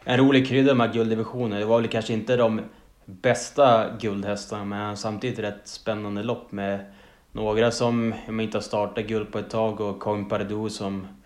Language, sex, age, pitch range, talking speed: Swedish, male, 20-39, 100-115 Hz, 170 wpm